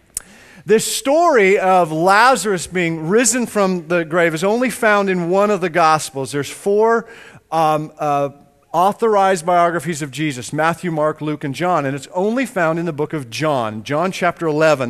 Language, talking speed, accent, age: English, 170 wpm, American, 40-59